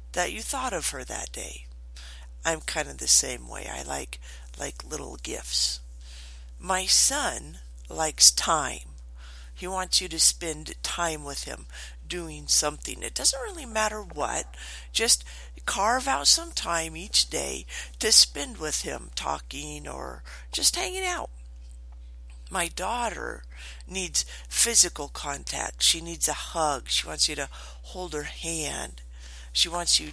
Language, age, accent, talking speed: English, 50-69, American, 145 wpm